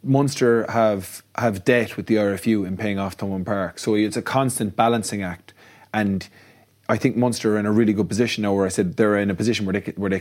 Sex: male